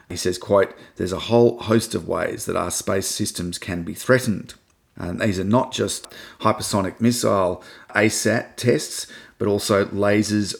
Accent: Australian